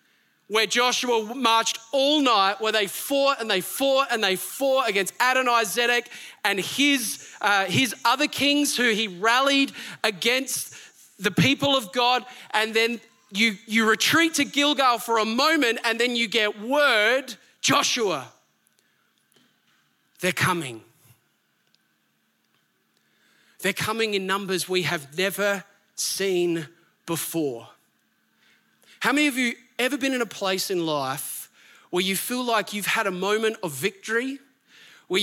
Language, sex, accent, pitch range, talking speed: English, male, Australian, 195-240 Hz, 135 wpm